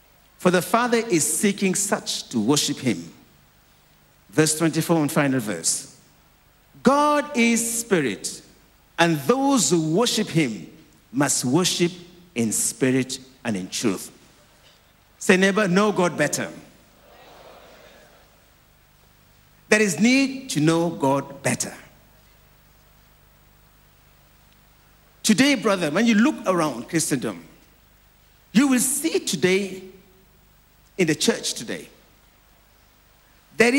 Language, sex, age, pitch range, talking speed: English, male, 60-79, 165-245 Hz, 100 wpm